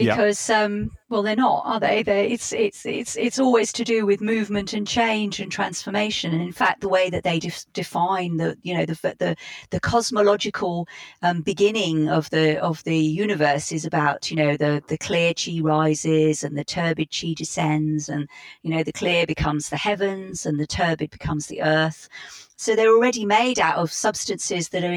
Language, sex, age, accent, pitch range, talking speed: English, female, 40-59, British, 165-225 Hz, 195 wpm